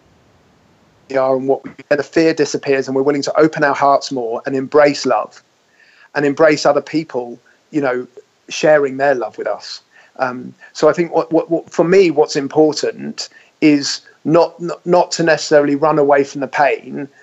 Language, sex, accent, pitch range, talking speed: English, male, British, 140-165 Hz, 175 wpm